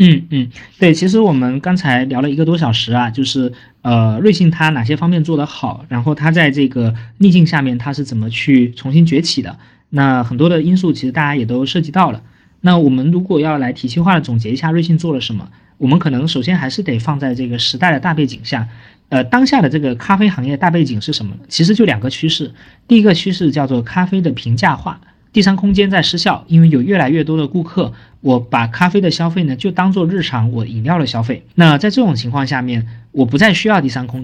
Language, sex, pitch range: Chinese, male, 125-175 Hz